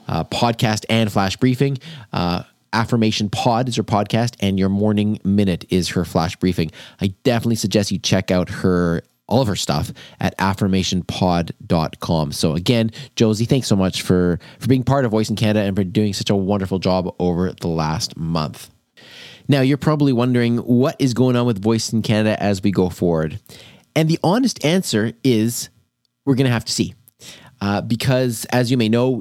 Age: 30-49